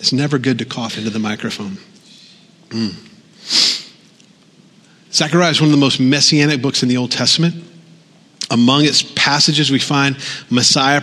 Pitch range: 130-175 Hz